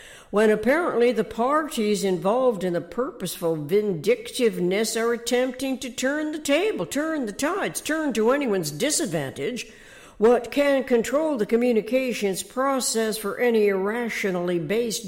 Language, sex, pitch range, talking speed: English, female, 195-245 Hz, 125 wpm